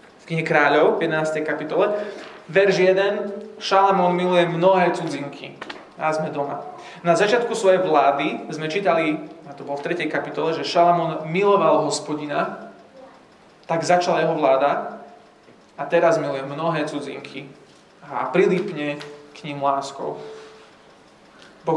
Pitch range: 155-185 Hz